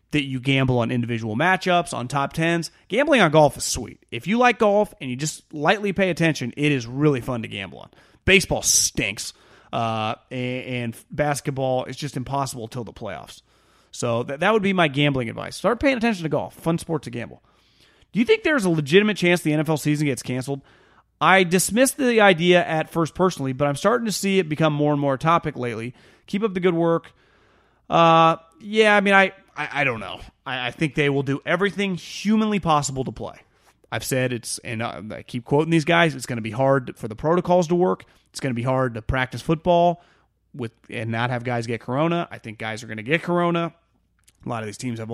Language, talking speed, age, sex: English, 215 wpm, 30-49, male